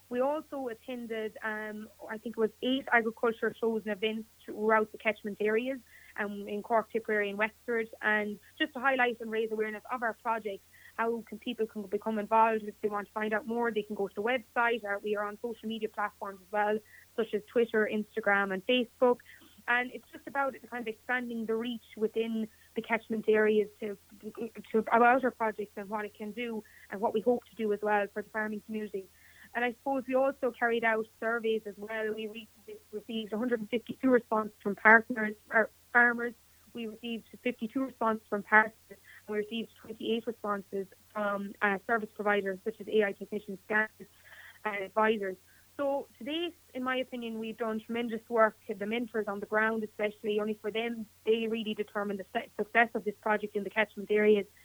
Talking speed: 190 wpm